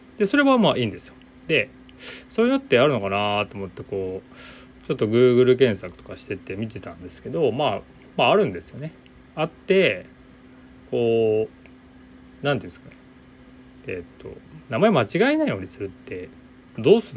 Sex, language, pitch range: male, Japanese, 95-150 Hz